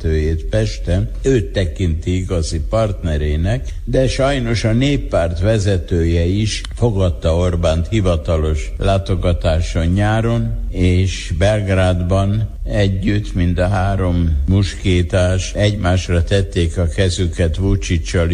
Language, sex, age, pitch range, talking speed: Hungarian, male, 60-79, 80-100 Hz, 90 wpm